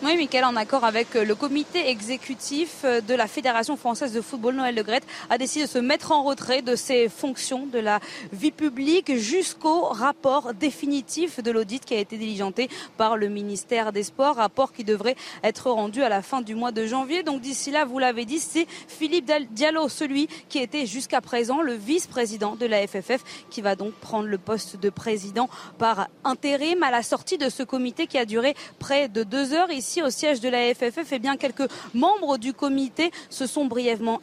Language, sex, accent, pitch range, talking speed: French, female, French, 230-285 Hz, 200 wpm